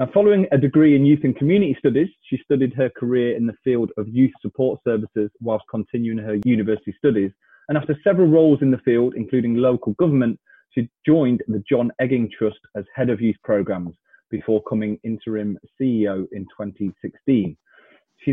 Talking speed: 170 wpm